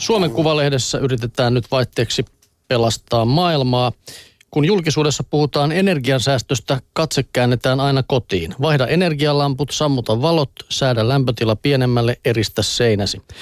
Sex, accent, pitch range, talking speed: male, native, 120-150 Hz, 105 wpm